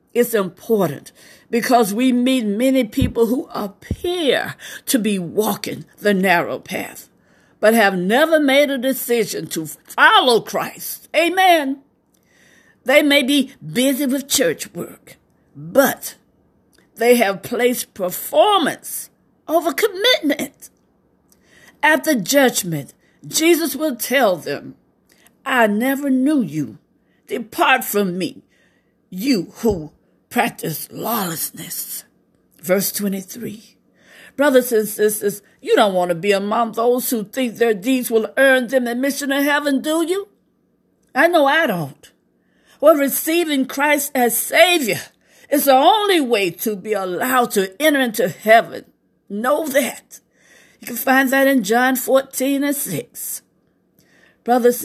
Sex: female